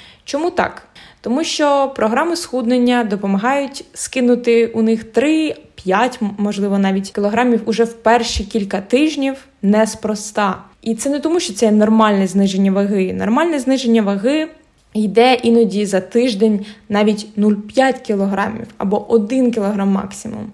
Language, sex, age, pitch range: Ukrainian, female, 20-39, 205-245 Hz